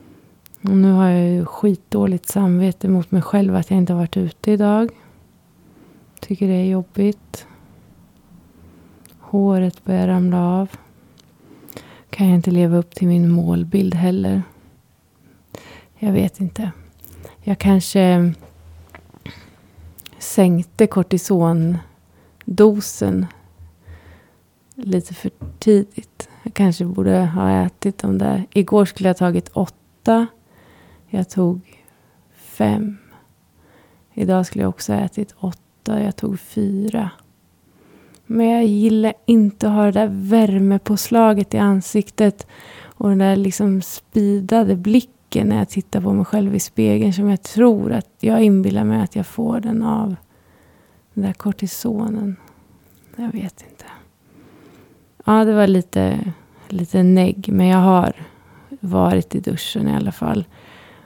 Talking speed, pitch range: 125 wpm, 170-205 Hz